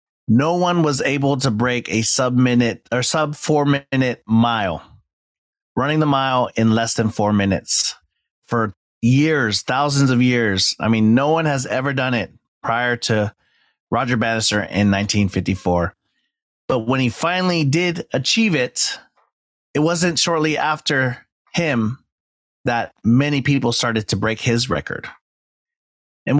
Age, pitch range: 30-49, 115-145 Hz